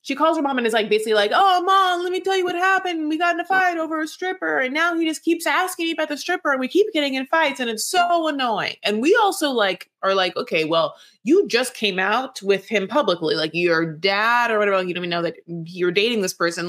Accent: American